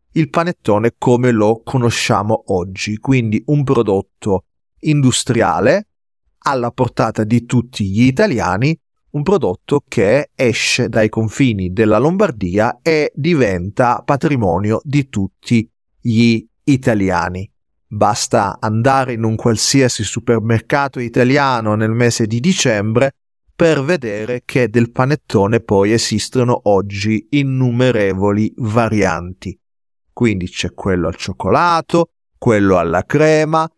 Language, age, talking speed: Italian, 40-59, 105 wpm